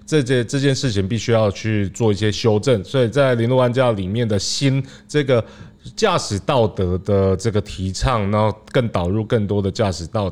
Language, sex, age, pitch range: Chinese, male, 30-49, 95-115 Hz